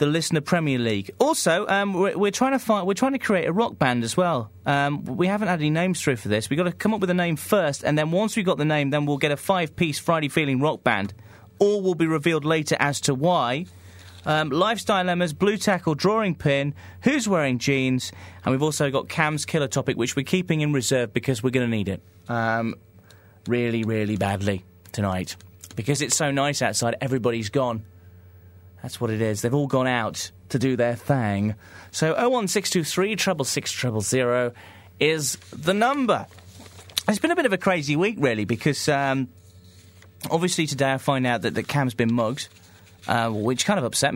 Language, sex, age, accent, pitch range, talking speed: English, male, 30-49, British, 110-165 Hz, 200 wpm